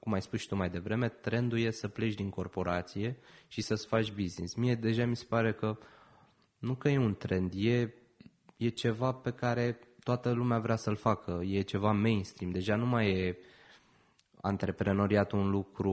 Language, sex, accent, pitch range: Romanian, male, native, 95-120 Hz